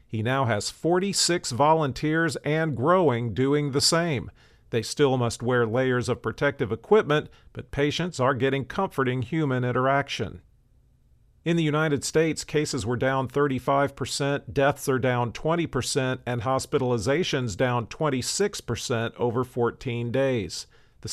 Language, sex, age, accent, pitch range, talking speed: English, male, 50-69, American, 120-145 Hz, 130 wpm